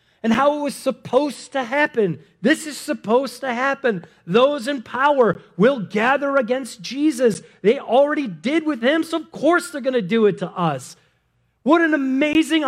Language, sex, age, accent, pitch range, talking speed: English, male, 40-59, American, 195-295 Hz, 175 wpm